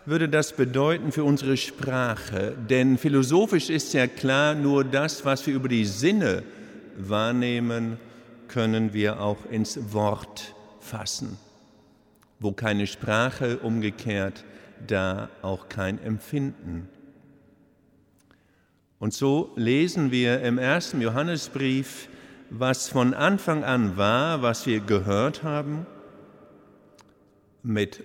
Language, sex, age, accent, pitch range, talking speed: German, male, 50-69, German, 105-140 Hz, 105 wpm